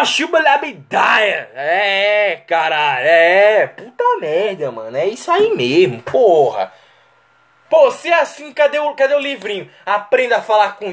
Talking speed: 145 wpm